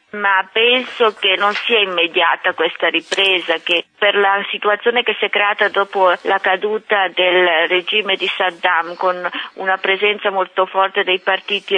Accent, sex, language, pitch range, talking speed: native, female, Italian, 180-210 Hz, 155 wpm